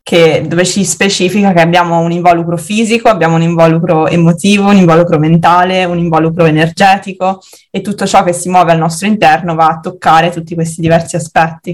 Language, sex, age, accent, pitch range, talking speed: Italian, female, 20-39, native, 165-185 Hz, 175 wpm